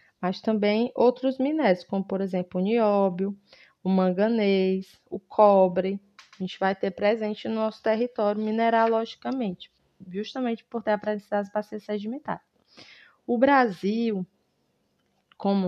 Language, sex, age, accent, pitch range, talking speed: Portuguese, female, 20-39, Brazilian, 190-230 Hz, 125 wpm